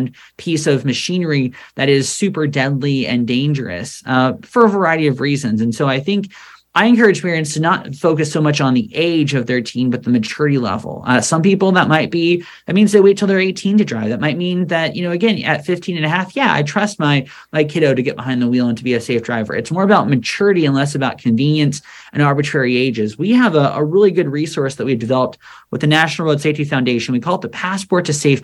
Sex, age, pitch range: male, 30-49, 130-175 Hz